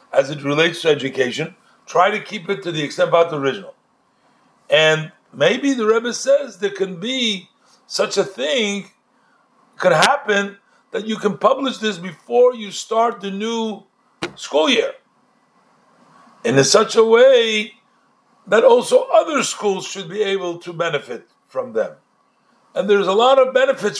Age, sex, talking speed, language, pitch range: 60-79, male, 155 wpm, English, 170-225 Hz